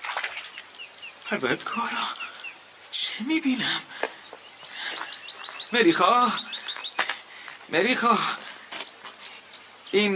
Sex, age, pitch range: male, 40-59, 185-275 Hz